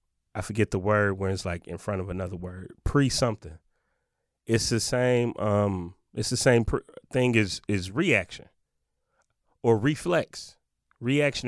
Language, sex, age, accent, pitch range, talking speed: English, male, 30-49, American, 95-130 Hz, 155 wpm